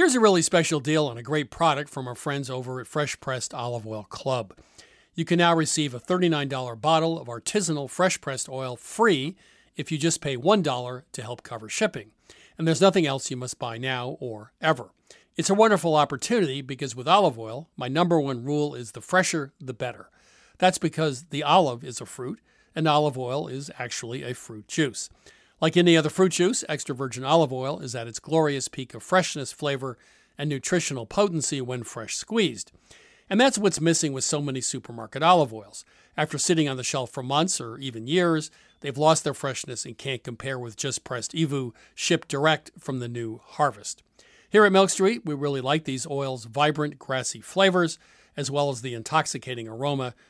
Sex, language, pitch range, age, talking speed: male, English, 125-160 Hz, 40-59, 190 wpm